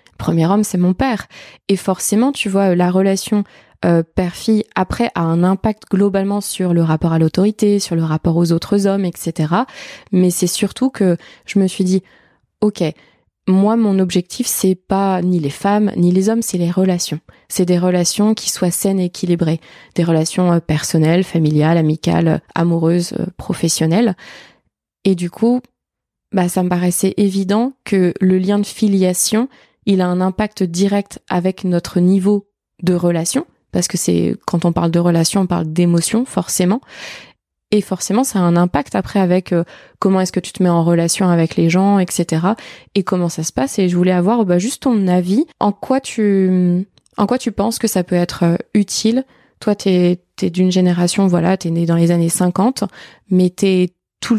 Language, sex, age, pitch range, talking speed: French, female, 20-39, 175-205 Hz, 185 wpm